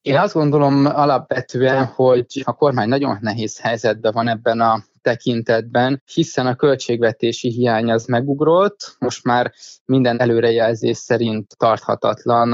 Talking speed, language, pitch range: 125 wpm, Hungarian, 115-135 Hz